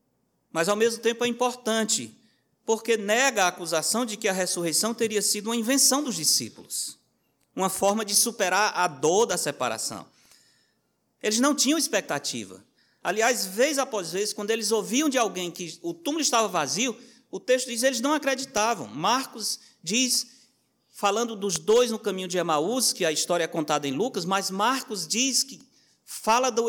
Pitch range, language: 170-245 Hz, Portuguese